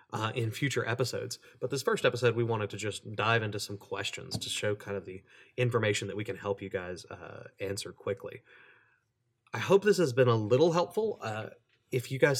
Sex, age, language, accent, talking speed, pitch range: male, 30-49, English, American, 210 wpm, 100-125 Hz